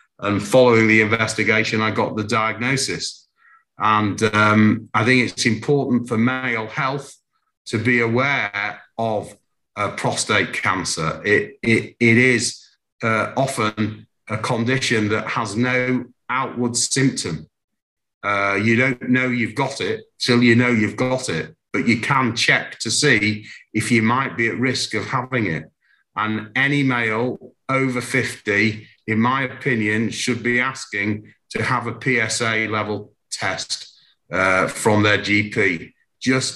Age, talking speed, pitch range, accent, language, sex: 40-59, 140 wpm, 110-125 Hz, British, English, male